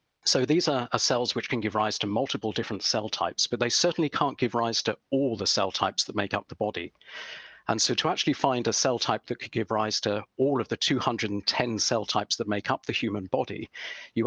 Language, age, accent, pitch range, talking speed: English, 50-69, British, 105-125 Hz, 235 wpm